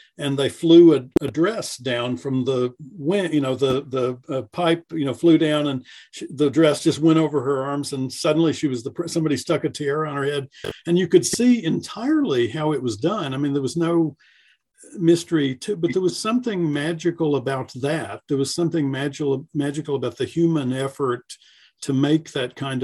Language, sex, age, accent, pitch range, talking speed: English, male, 50-69, American, 135-160 Hz, 200 wpm